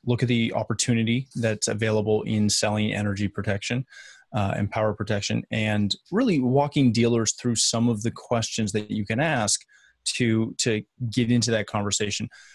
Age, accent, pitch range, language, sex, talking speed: 20-39, American, 105-130 Hz, English, male, 160 wpm